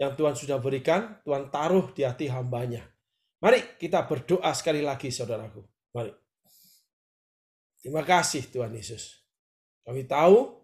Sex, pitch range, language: male, 130-170 Hz, Indonesian